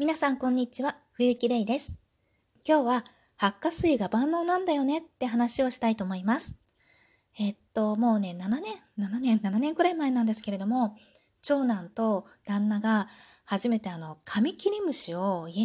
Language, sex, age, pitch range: Japanese, female, 20-39, 200-255 Hz